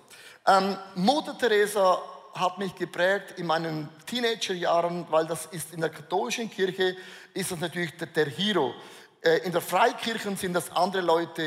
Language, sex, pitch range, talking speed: German, male, 175-225 Hz, 155 wpm